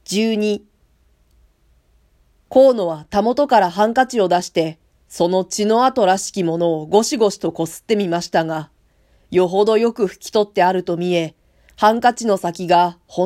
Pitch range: 165-225 Hz